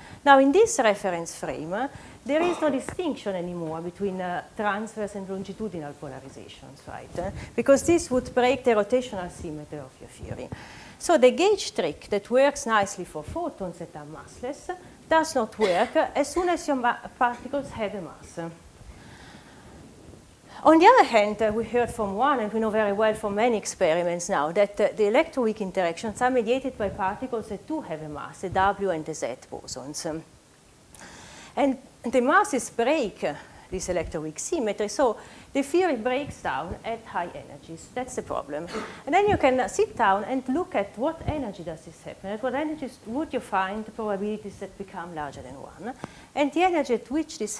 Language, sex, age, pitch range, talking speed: English, female, 40-59, 185-270 Hz, 180 wpm